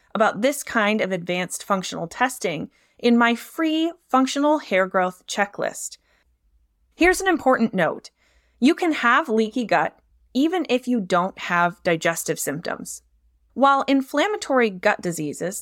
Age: 20-39